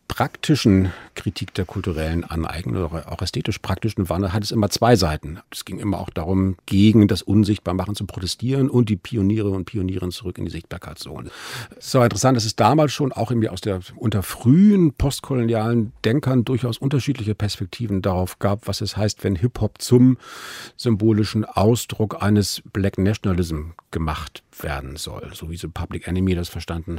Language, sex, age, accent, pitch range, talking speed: German, male, 50-69, German, 90-115 Hz, 170 wpm